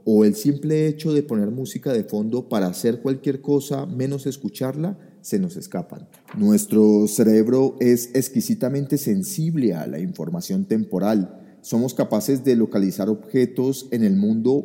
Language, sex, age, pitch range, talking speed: Spanish, male, 30-49, 105-150 Hz, 145 wpm